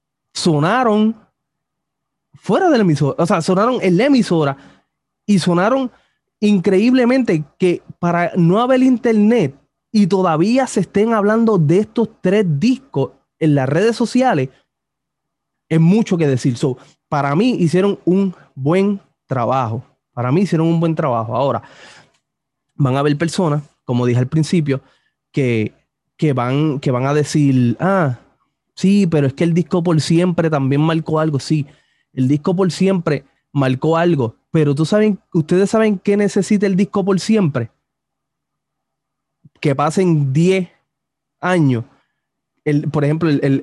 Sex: male